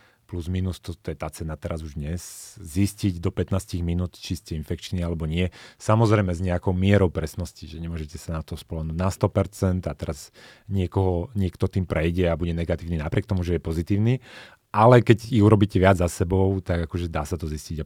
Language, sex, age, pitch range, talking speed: Slovak, male, 30-49, 85-100 Hz, 200 wpm